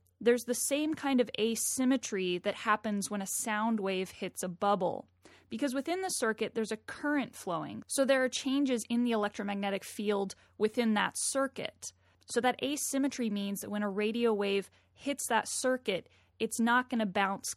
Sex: female